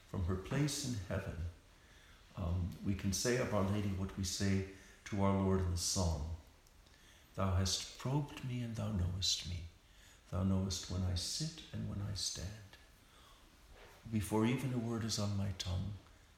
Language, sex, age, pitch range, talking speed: English, male, 60-79, 85-105 Hz, 170 wpm